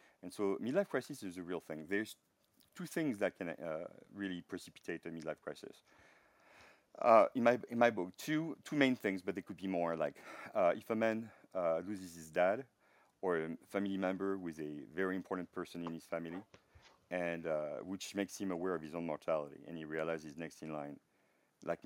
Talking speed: 200 wpm